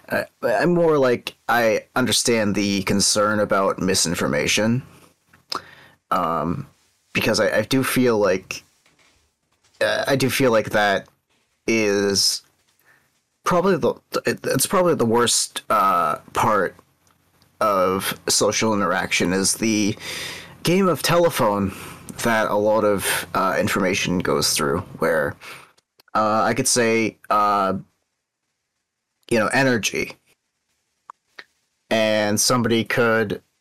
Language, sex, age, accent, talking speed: English, male, 30-49, American, 105 wpm